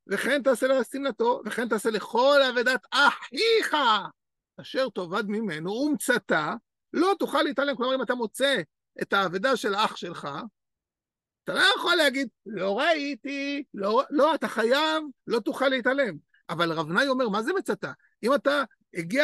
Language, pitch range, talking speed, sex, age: Hebrew, 215-285 Hz, 150 wpm, male, 50-69